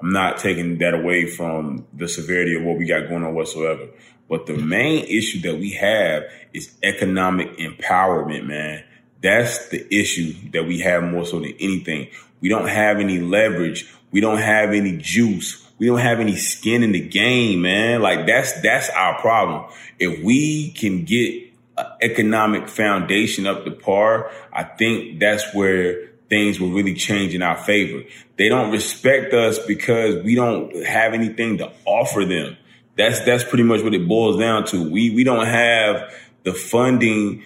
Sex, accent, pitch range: male, American, 95-120 Hz